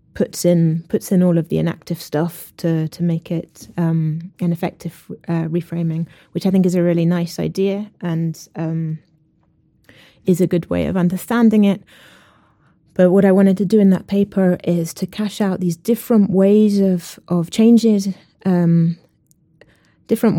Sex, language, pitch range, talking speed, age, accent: female, English, 170-200 Hz, 165 wpm, 20-39, British